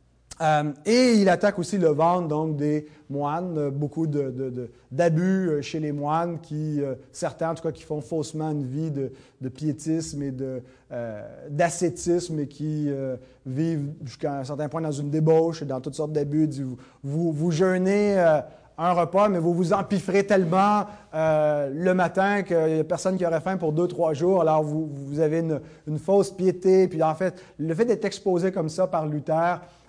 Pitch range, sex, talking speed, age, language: 150-190 Hz, male, 200 wpm, 30-49, French